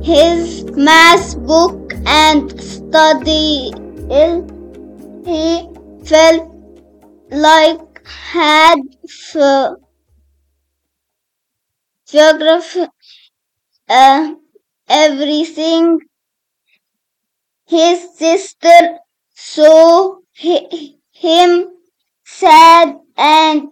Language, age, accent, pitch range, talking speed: English, 20-39, Indian, 305-335 Hz, 50 wpm